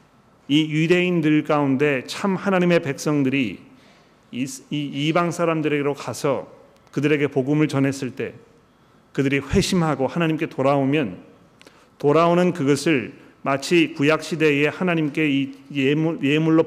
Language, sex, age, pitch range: Korean, male, 40-59, 135-170 Hz